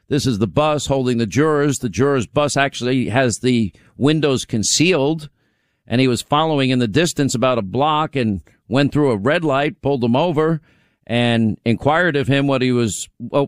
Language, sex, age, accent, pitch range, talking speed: English, male, 50-69, American, 130-155 Hz, 185 wpm